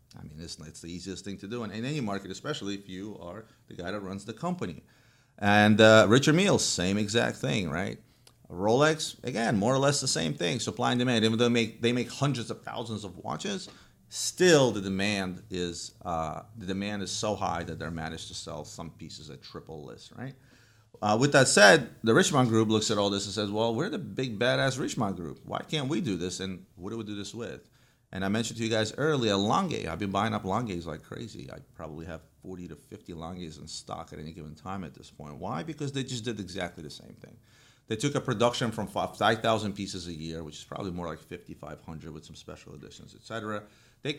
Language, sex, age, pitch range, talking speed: English, male, 30-49, 90-120 Hz, 225 wpm